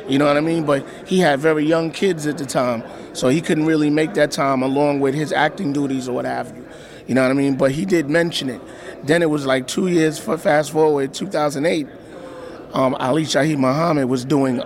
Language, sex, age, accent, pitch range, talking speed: English, male, 30-49, American, 130-155 Hz, 230 wpm